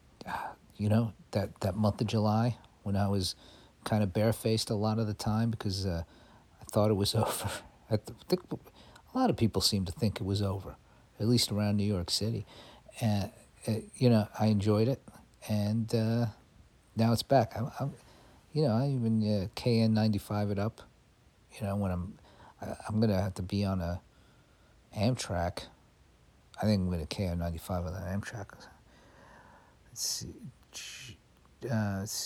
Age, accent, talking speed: 50-69, American, 165 wpm